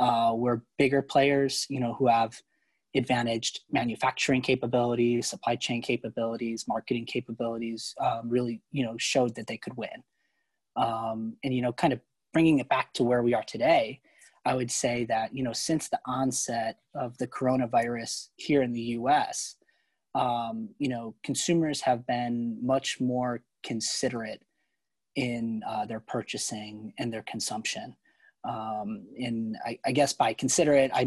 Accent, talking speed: American, 155 wpm